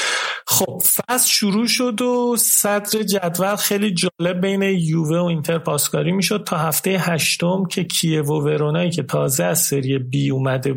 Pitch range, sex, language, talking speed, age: 145-180 Hz, male, Persian, 150 wpm, 40-59